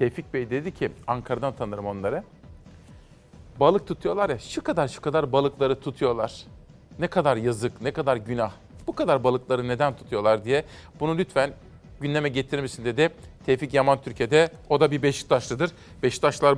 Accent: native